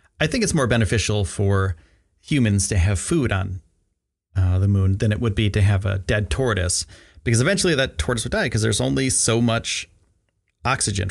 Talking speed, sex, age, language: 190 wpm, male, 30-49, English